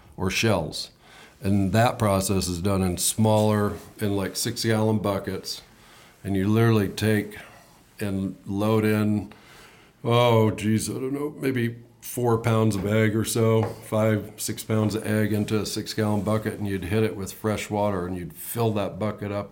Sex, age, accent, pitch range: male, 50-69, American, 95-110 Hz